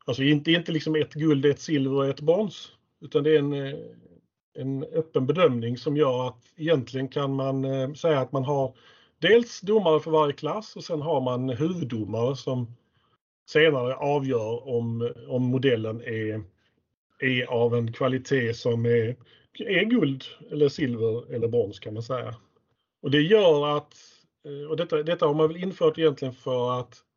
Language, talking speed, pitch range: Swedish, 165 wpm, 125-160 Hz